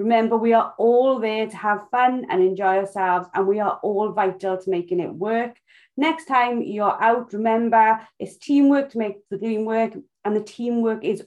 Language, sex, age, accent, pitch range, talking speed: English, female, 30-49, British, 200-280 Hz, 190 wpm